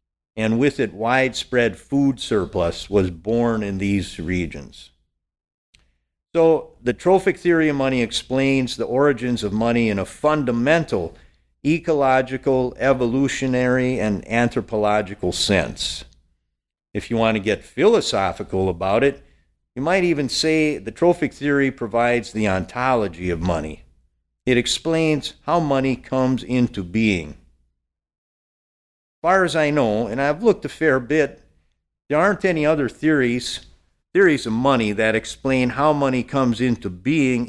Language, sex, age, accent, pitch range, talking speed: English, male, 50-69, American, 95-140 Hz, 130 wpm